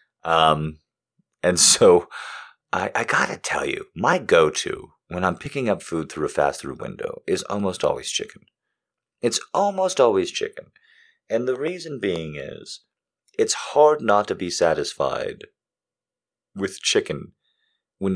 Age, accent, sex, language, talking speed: 30-49, American, male, English, 140 wpm